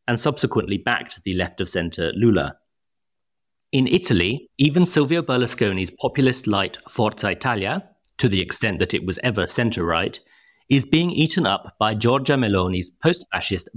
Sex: male